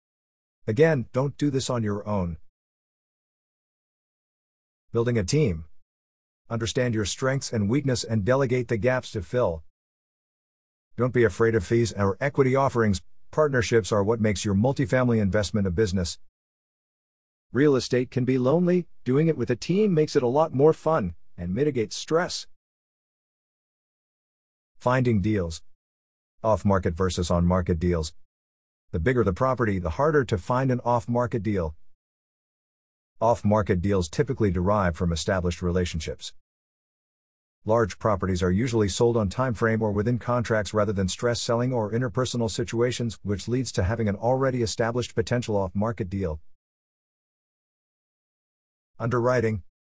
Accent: American